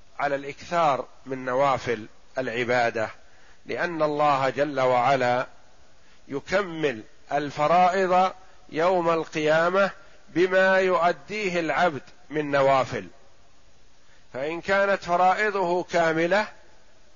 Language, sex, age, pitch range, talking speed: Arabic, male, 50-69, 140-180 Hz, 75 wpm